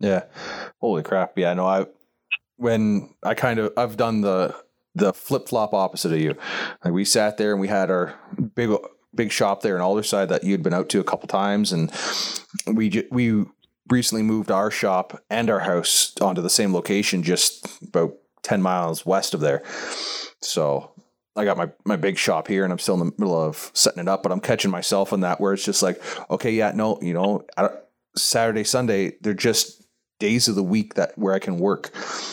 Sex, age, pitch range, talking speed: male, 30-49, 90-110 Hz, 200 wpm